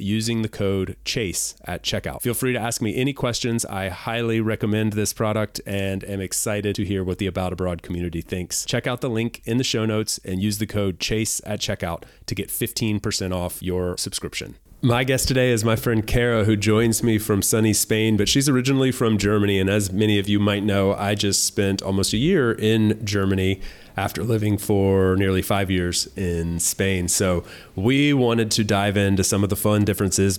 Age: 30-49